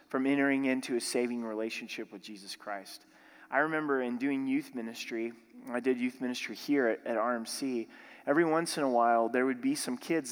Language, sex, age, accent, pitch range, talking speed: English, male, 30-49, American, 120-155 Hz, 190 wpm